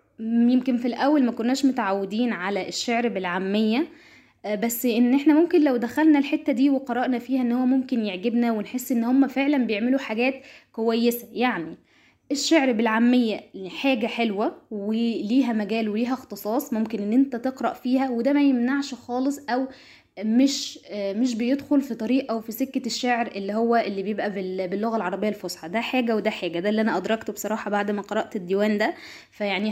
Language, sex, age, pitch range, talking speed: Arabic, female, 10-29, 220-260 Hz, 160 wpm